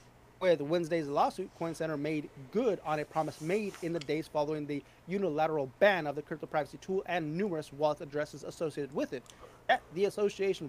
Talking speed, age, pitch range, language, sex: 180 wpm, 30-49, 165-215 Hz, English, male